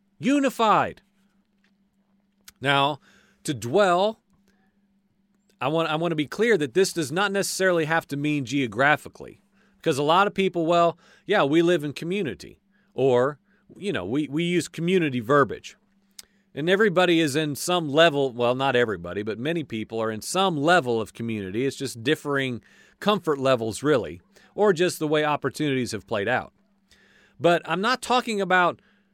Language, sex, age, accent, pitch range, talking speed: English, male, 40-59, American, 145-200 Hz, 155 wpm